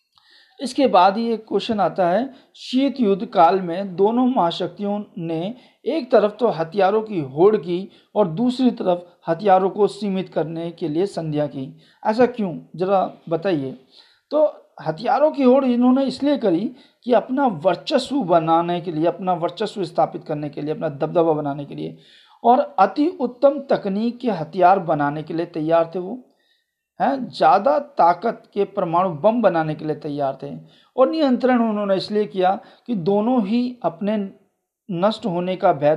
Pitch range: 170-235 Hz